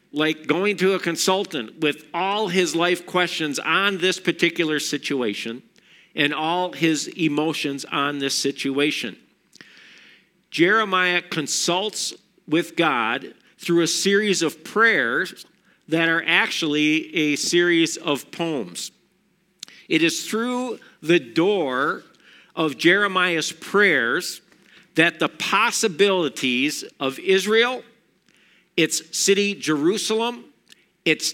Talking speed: 105 wpm